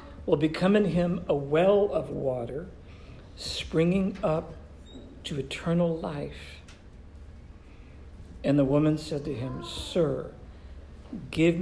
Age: 50-69